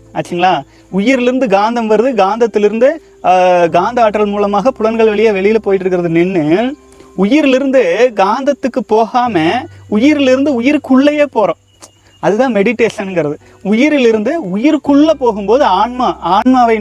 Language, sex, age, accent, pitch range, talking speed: Tamil, male, 30-49, native, 180-250 Hz, 35 wpm